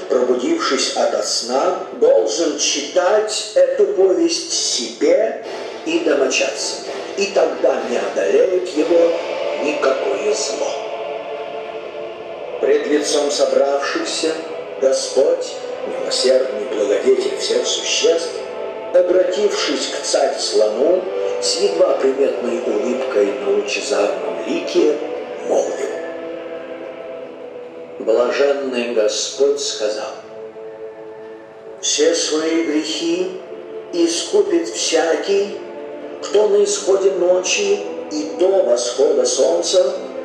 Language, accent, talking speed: Russian, native, 75 wpm